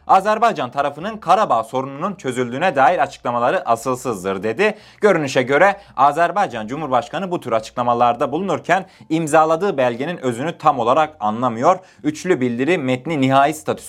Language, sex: Turkish, male